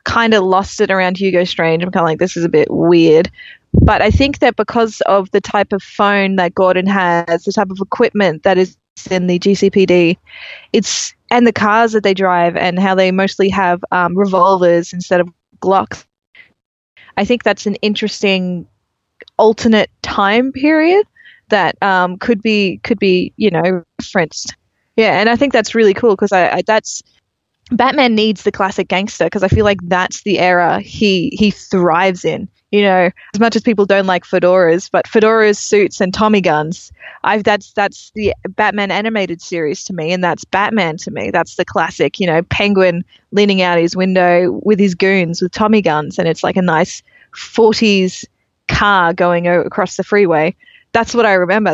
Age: 20-39